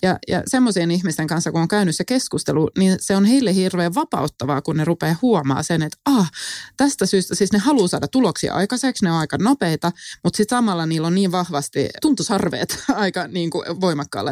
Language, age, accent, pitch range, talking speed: Finnish, 20-39, native, 155-210 Hz, 195 wpm